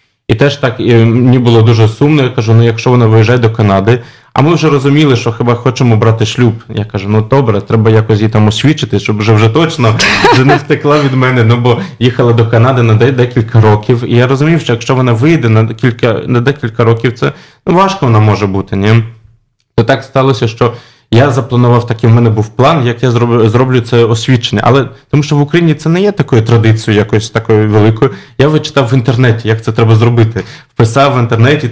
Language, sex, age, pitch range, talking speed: Polish, male, 20-39, 115-135 Hz, 205 wpm